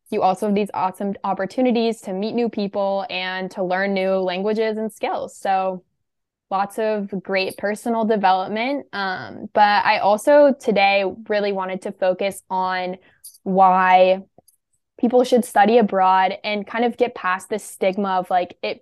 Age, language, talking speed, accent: 10-29, English, 155 wpm, American